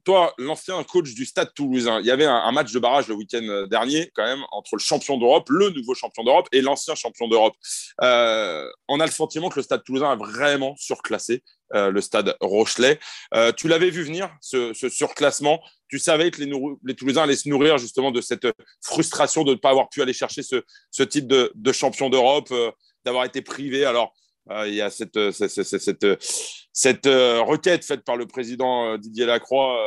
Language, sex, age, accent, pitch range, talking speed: French, male, 30-49, French, 115-175 Hz, 205 wpm